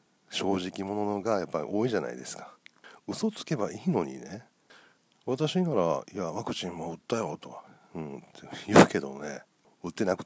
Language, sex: Japanese, male